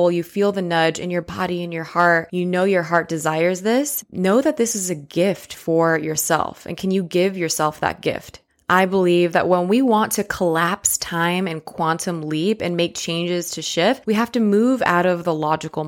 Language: English